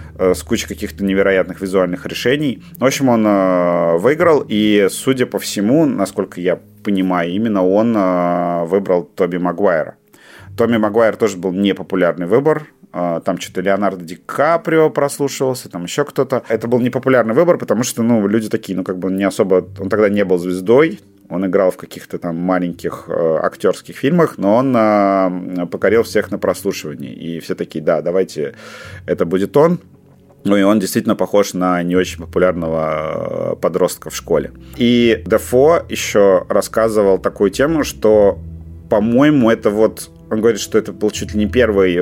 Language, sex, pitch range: Russian, male, 90-110 Hz